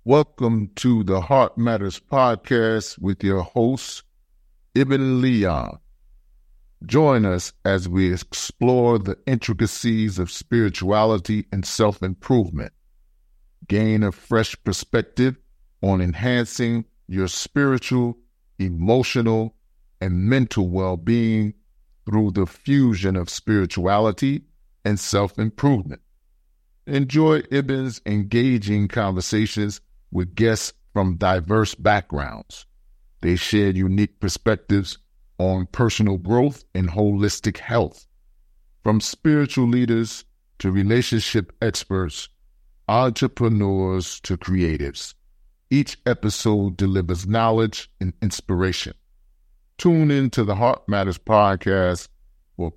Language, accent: English, American